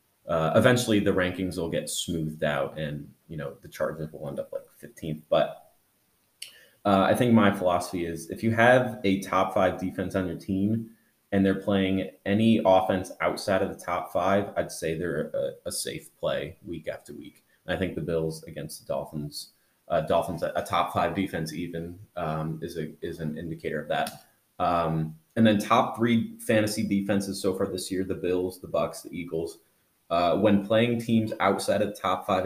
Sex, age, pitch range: male, 30-49, 85-105 Hz